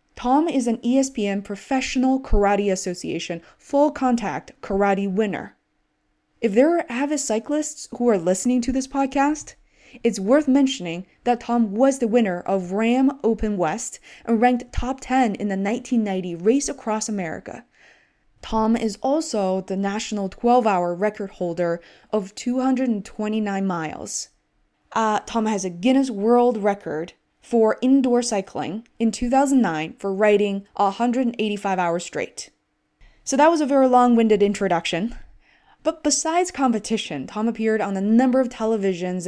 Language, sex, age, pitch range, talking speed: English, female, 20-39, 195-255 Hz, 135 wpm